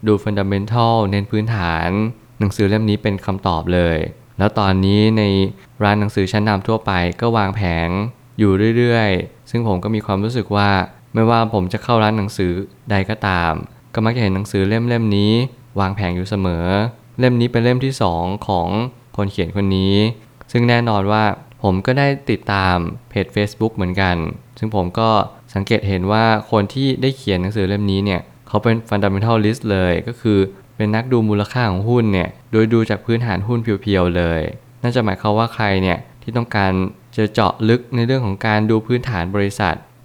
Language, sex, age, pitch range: Thai, male, 20-39, 95-115 Hz